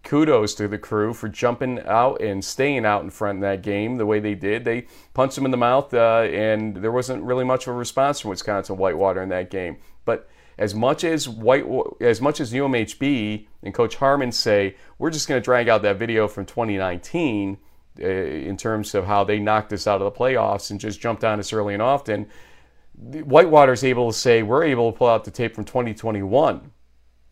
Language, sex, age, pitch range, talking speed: English, male, 40-59, 100-130 Hz, 210 wpm